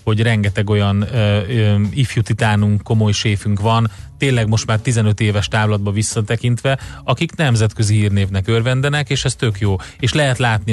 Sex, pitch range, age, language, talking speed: male, 105-125 Hz, 30-49, Hungarian, 155 wpm